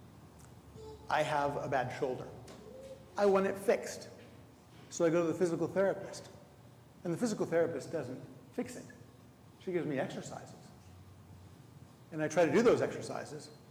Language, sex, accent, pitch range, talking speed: English, male, American, 120-155 Hz, 150 wpm